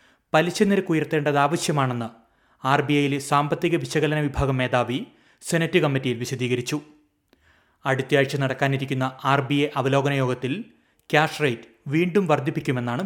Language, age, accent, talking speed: Malayalam, 30-49, native, 100 wpm